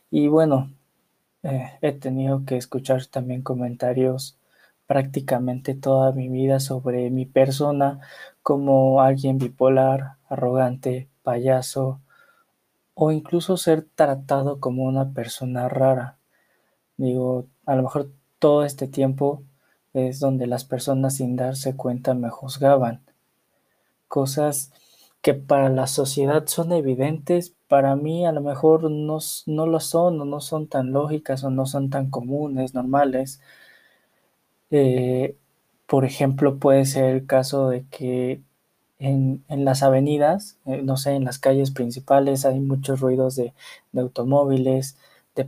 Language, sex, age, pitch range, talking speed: Spanish, male, 20-39, 130-145 Hz, 130 wpm